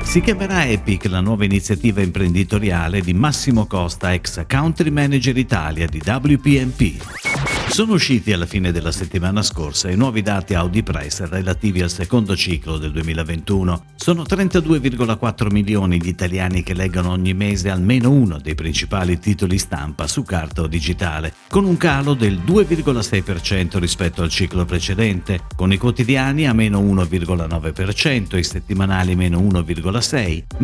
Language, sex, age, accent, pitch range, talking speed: Italian, male, 50-69, native, 90-125 Hz, 145 wpm